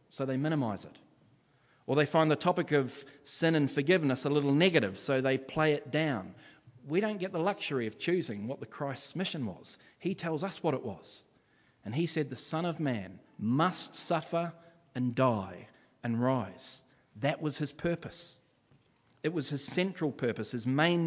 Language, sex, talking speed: English, male, 180 wpm